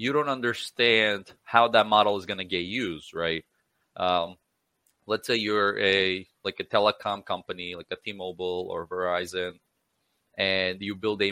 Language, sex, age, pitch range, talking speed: English, male, 20-39, 95-115 Hz, 160 wpm